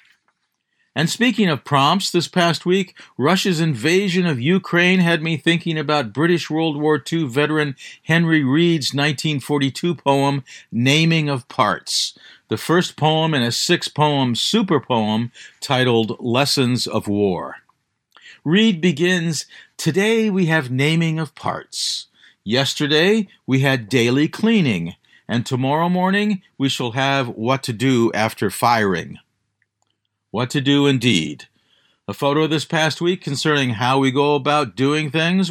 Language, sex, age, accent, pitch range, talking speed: English, male, 50-69, American, 130-170 Hz, 135 wpm